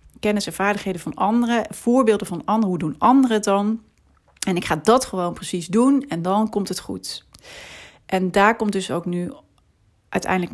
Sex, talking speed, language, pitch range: female, 180 wpm, Dutch, 170-215 Hz